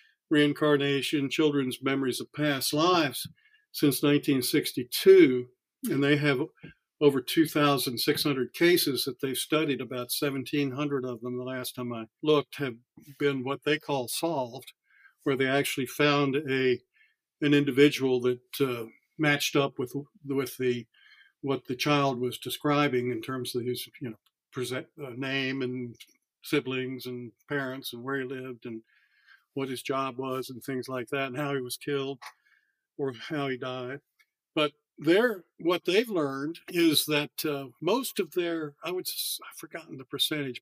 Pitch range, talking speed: 130-150 Hz, 150 wpm